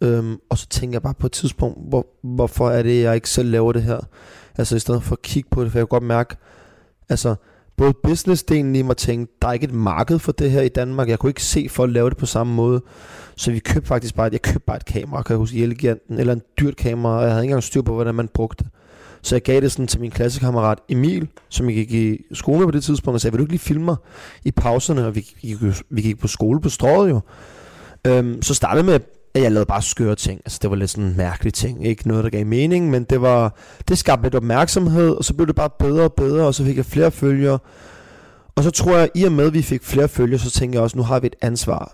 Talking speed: 270 wpm